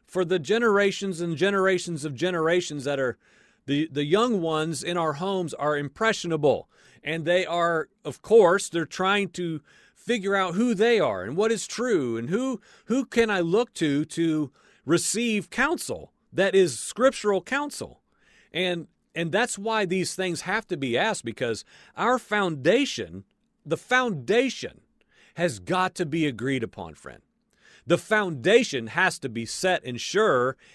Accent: American